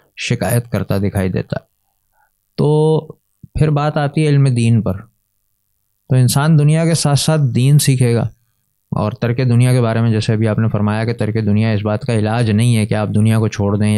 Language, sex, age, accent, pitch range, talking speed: English, male, 30-49, Indian, 105-130 Hz, 190 wpm